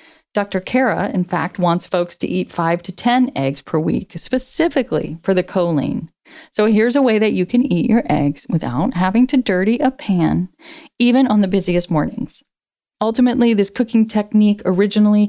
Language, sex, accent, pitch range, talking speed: English, female, American, 170-220 Hz, 175 wpm